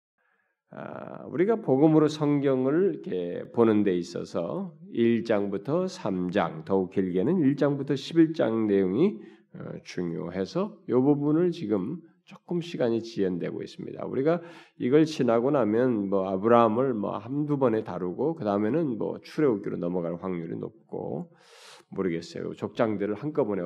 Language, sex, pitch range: Korean, male, 95-145 Hz